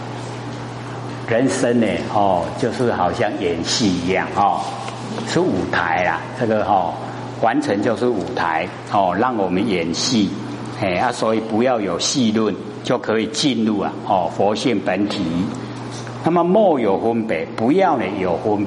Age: 50-69